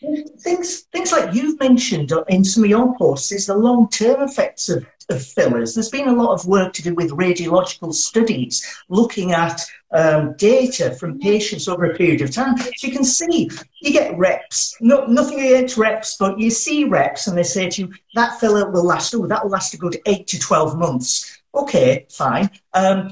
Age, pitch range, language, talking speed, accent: 50-69, 175-250 Hz, English, 195 wpm, British